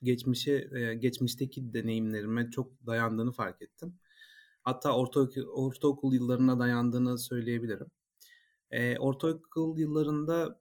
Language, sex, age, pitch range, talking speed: Turkish, male, 30-49, 120-145 Hz, 90 wpm